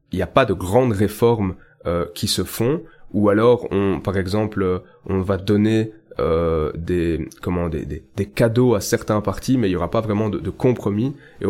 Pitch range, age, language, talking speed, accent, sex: 95-110 Hz, 20-39, French, 205 wpm, French, male